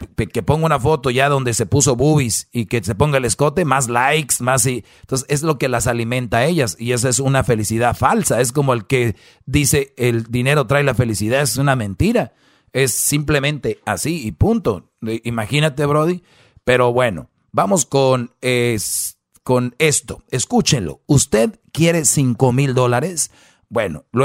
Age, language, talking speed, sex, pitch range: 40-59, Spanish, 165 wpm, male, 120-150 Hz